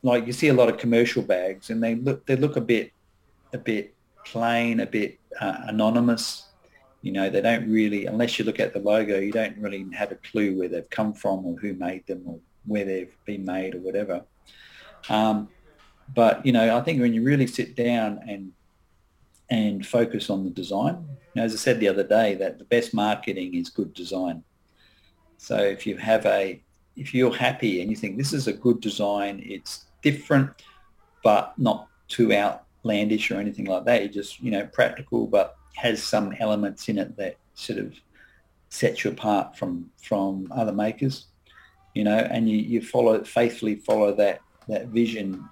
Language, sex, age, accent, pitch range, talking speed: English, male, 40-59, Australian, 95-115 Hz, 185 wpm